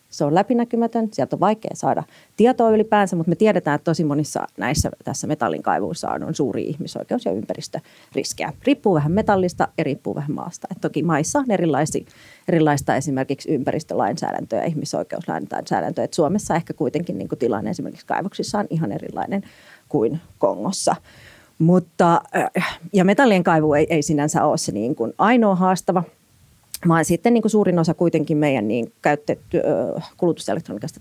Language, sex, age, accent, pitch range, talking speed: Finnish, female, 30-49, native, 155-195 Hz, 135 wpm